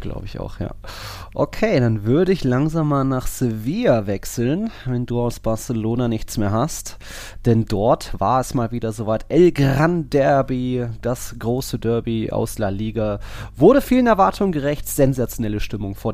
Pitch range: 110-135 Hz